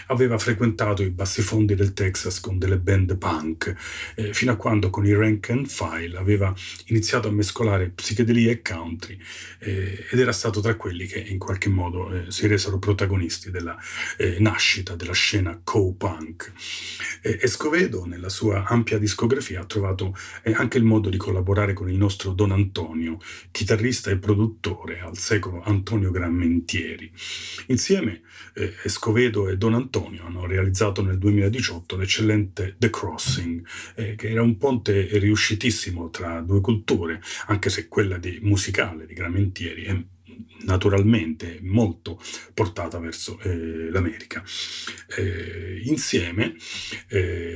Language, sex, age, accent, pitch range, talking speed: Italian, male, 40-59, native, 90-110 Hz, 140 wpm